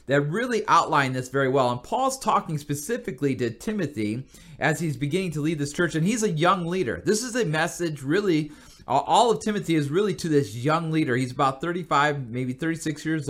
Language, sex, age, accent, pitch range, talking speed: English, male, 30-49, American, 130-175 Hz, 200 wpm